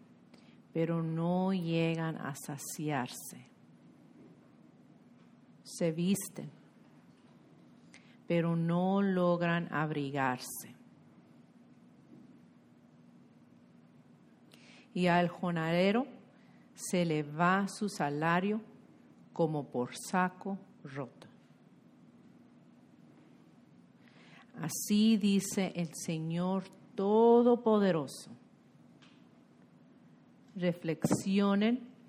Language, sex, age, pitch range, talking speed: Polish, female, 50-69, 165-205 Hz, 55 wpm